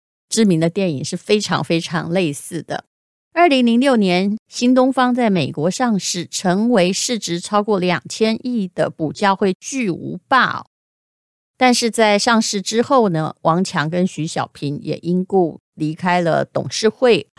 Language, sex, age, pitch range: Chinese, female, 30-49, 160-220 Hz